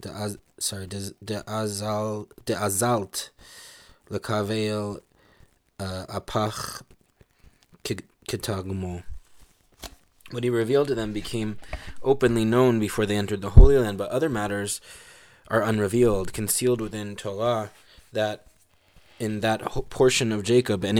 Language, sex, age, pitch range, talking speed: English, male, 20-39, 100-120 Hz, 115 wpm